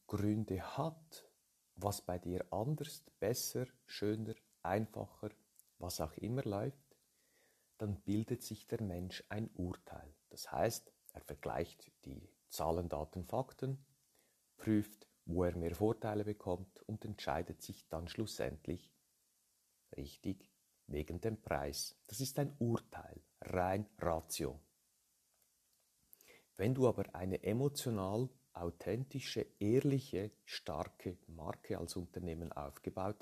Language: German